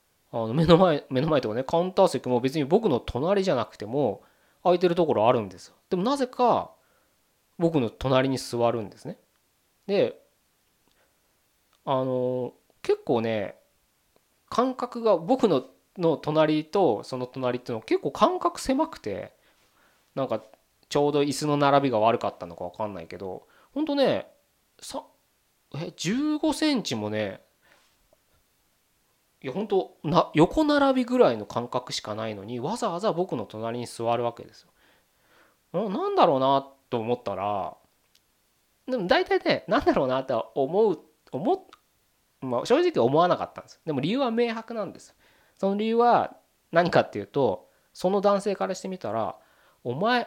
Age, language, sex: 20-39, Japanese, male